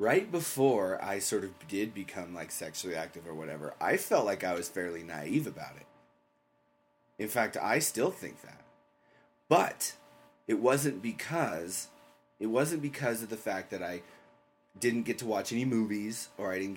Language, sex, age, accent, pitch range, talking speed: English, male, 30-49, American, 85-130 Hz, 170 wpm